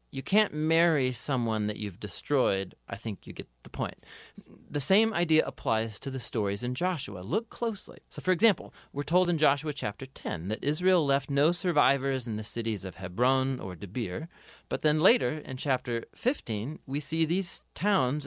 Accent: American